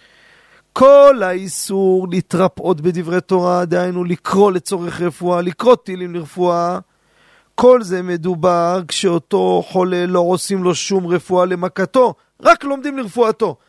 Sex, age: male, 40-59